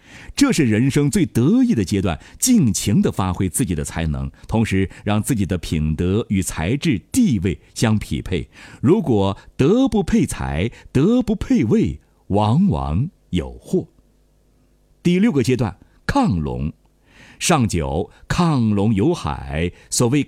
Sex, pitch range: male, 90-140 Hz